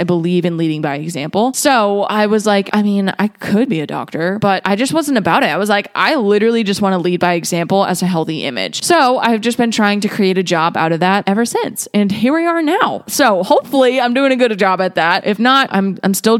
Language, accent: English, American